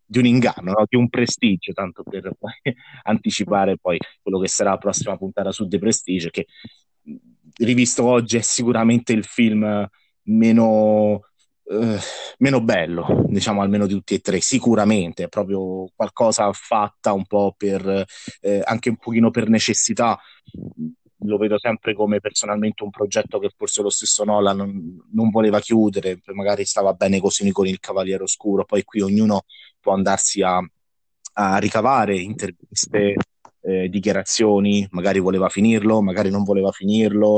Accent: native